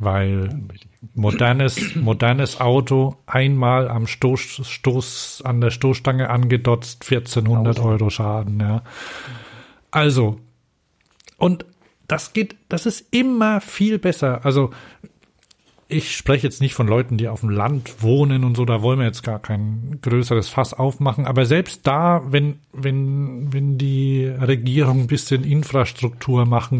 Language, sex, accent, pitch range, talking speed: German, male, German, 115-145 Hz, 135 wpm